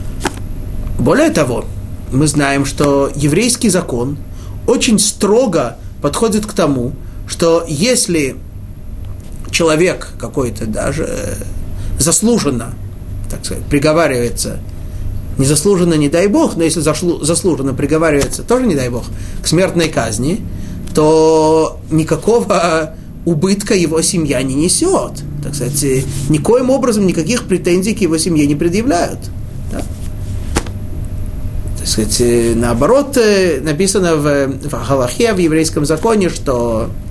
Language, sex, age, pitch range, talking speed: Russian, male, 30-49, 105-175 Hz, 100 wpm